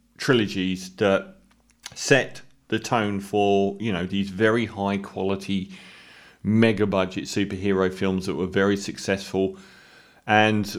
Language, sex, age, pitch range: English, male, 40-59, 95-120 Hz